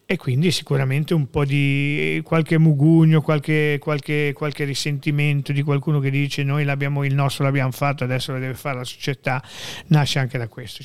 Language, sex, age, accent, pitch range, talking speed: Italian, male, 40-59, native, 130-155 Hz, 175 wpm